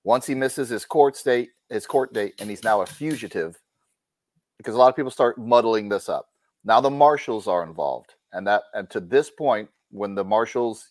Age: 30-49